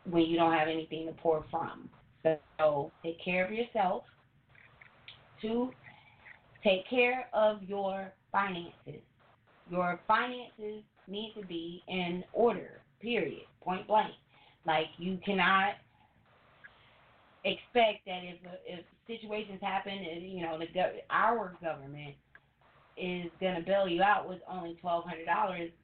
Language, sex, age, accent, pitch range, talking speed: English, female, 30-49, American, 170-215 Hz, 130 wpm